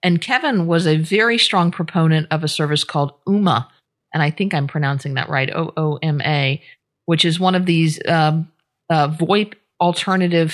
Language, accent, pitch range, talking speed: English, American, 150-180 Hz, 180 wpm